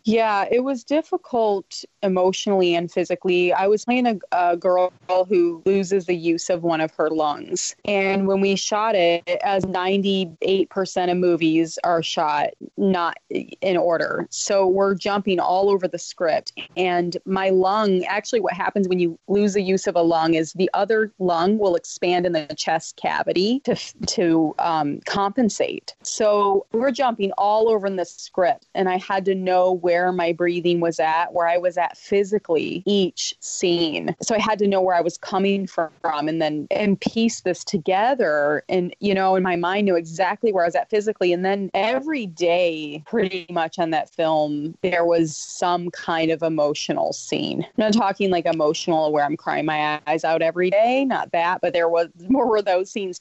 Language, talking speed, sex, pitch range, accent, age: English, 185 wpm, female, 170-200 Hz, American, 30-49